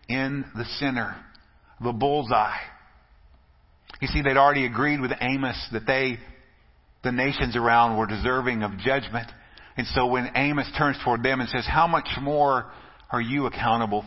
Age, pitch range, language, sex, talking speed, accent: 50-69, 115-150 Hz, English, male, 155 wpm, American